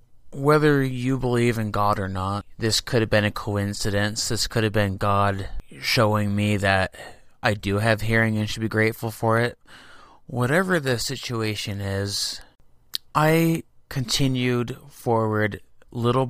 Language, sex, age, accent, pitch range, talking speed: English, male, 30-49, American, 100-120 Hz, 145 wpm